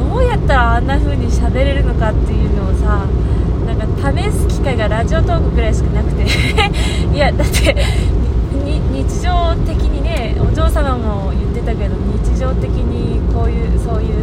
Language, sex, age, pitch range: Japanese, female, 20-39, 80-105 Hz